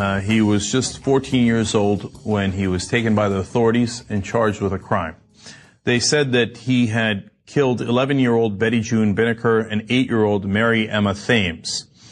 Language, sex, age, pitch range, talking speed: English, male, 30-49, 100-125 Hz, 170 wpm